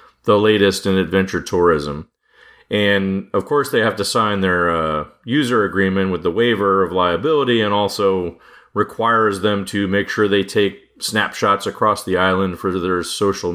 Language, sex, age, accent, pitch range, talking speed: English, male, 40-59, American, 90-105 Hz, 165 wpm